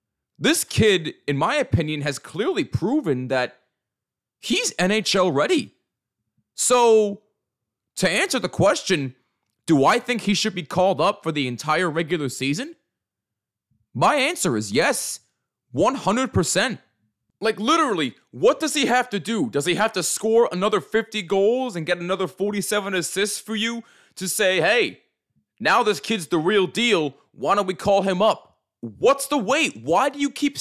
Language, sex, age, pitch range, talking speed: English, male, 20-39, 180-270 Hz, 155 wpm